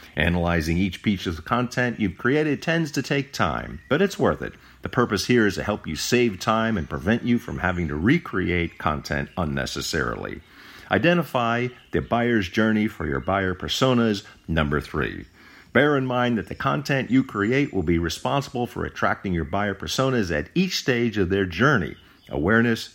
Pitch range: 85-125 Hz